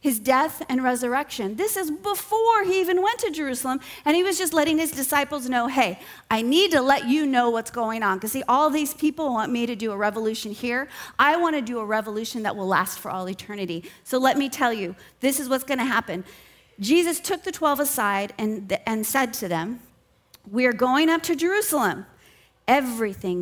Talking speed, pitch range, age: 210 wpm, 195-265 Hz, 40-59